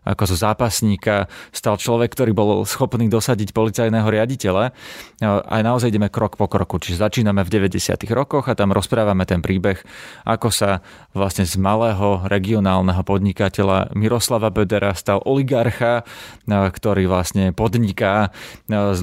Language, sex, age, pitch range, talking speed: Slovak, male, 30-49, 95-115 Hz, 130 wpm